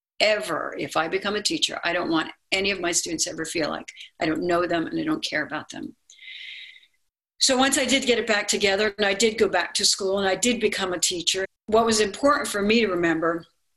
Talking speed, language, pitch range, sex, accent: 235 wpm, English, 180-225 Hz, female, American